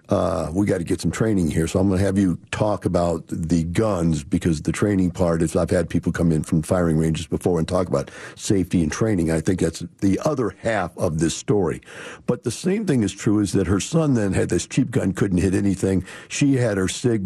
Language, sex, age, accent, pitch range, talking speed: English, male, 50-69, American, 85-105 Hz, 240 wpm